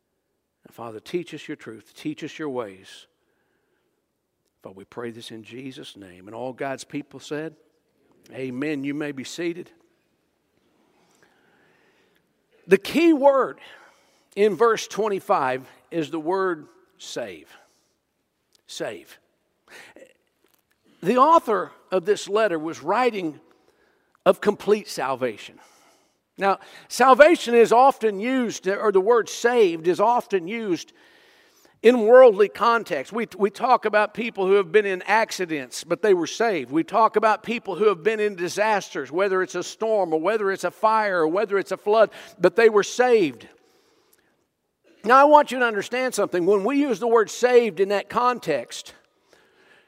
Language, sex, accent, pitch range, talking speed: English, male, American, 175-275 Hz, 145 wpm